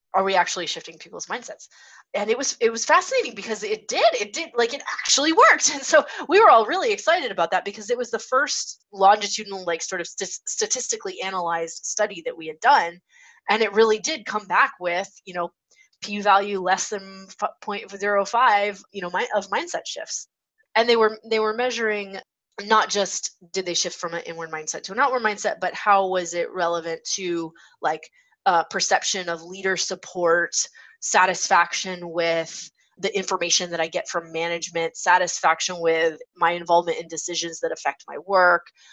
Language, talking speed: English, 180 wpm